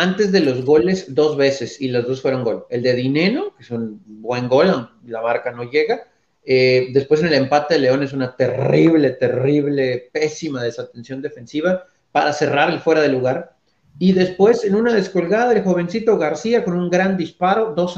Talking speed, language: 185 wpm, Spanish